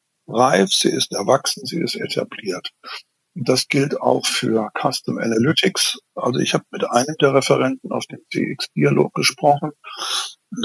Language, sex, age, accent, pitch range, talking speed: German, male, 60-79, German, 130-155 Hz, 150 wpm